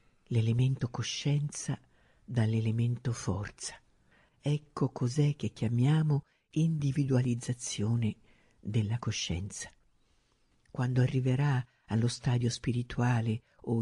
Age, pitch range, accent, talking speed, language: 50-69, 115-135 Hz, native, 75 wpm, Italian